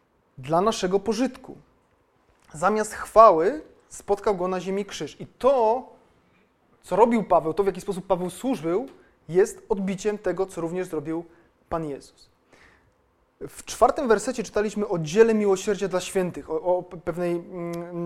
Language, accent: Polish, native